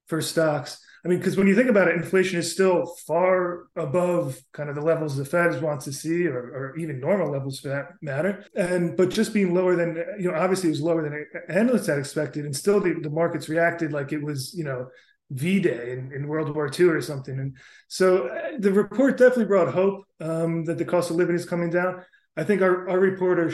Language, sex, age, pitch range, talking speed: English, male, 20-39, 150-185 Hz, 225 wpm